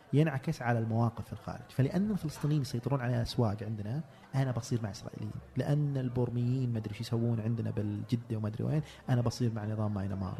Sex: male